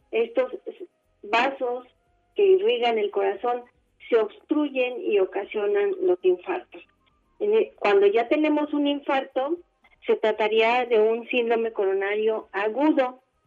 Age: 40-59